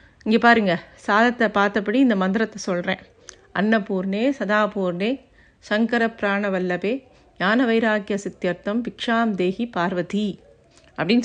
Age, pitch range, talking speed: 50-69, 200-245 Hz, 95 wpm